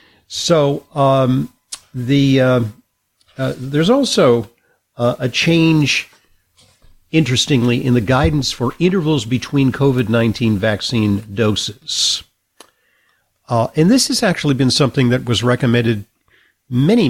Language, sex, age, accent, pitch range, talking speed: English, male, 50-69, American, 105-135 Hz, 110 wpm